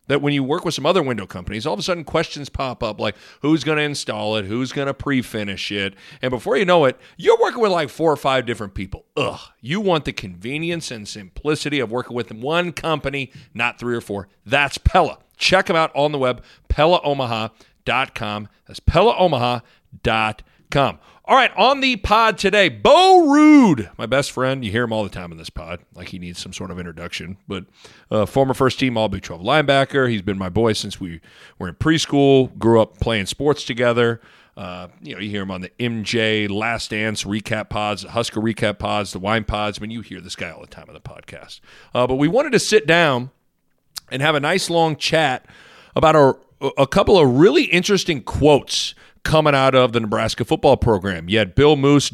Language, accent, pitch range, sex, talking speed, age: English, American, 110-150 Hz, male, 205 wpm, 40-59